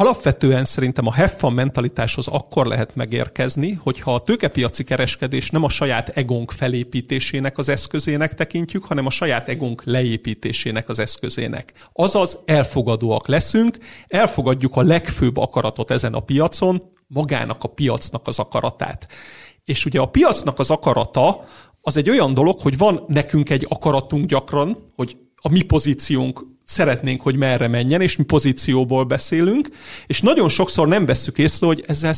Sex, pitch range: male, 125-155 Hz